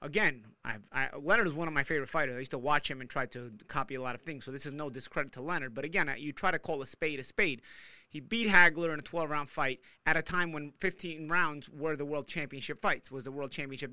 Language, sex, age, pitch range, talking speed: English, male, 30-49, 140-190 Hz, 260 wpm